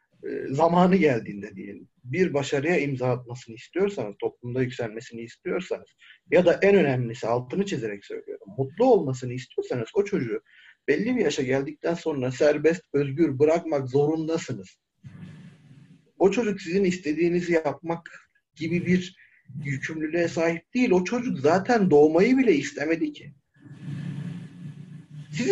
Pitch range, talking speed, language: 135-195 Hz, 120 wpm, Turkish